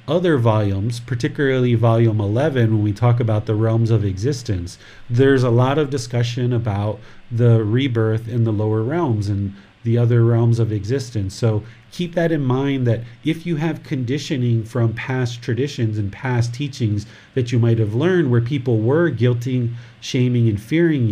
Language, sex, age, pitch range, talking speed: English, male, 40-59, 115-135 Hz, 170 wpm